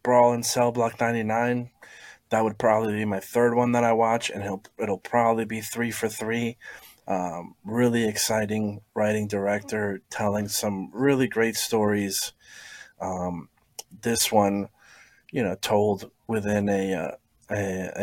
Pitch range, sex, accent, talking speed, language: 100-120 Hz, male, American, 140 wpm, English